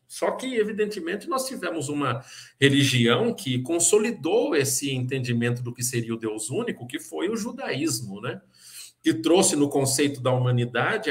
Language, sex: Portuguese, male